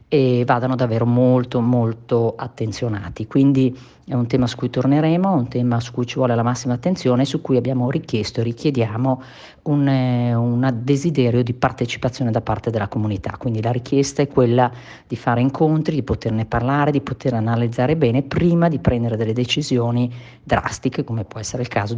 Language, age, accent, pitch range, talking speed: Italian, 40-59, native, 115-135 Hz, 175 wpm